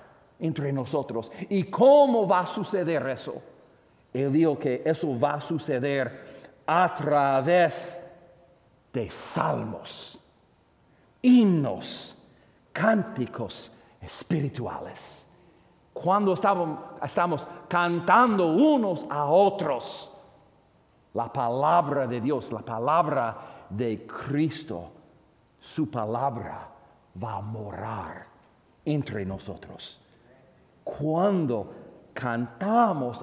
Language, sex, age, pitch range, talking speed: English, male, 50-69, 140-205 Hz, 85 wpm